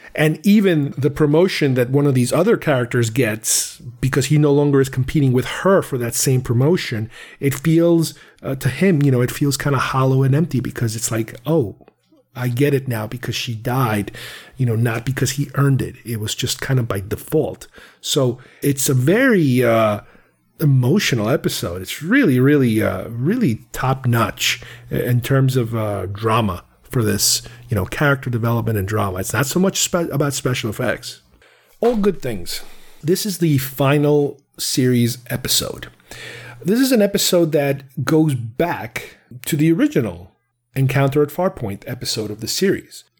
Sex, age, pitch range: male, 40-59, 120-160 Hz